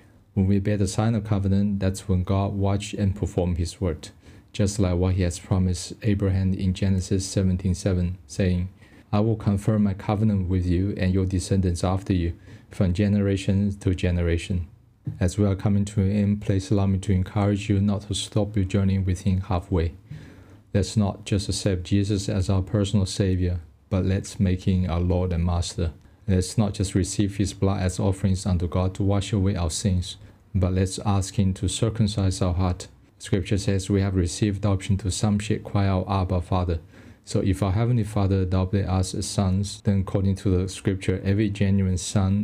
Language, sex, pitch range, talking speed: English, male, 95-105 Hz, 190 wpm